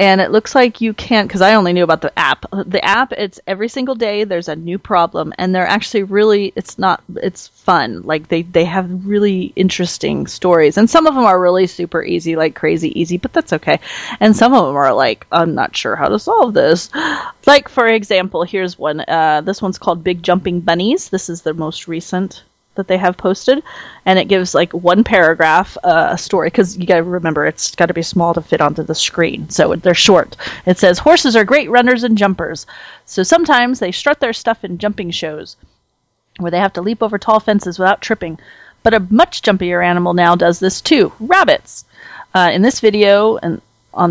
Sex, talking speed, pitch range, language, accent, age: female, 210 wpm, 175-220 Hz, English, American, 30-49